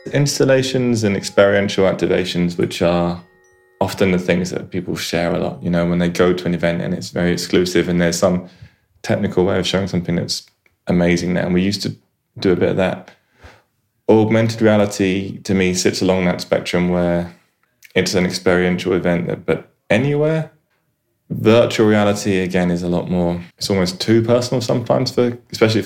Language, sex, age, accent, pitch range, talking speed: English, male, 20-39, British, 90-100 Hz, 175 wpm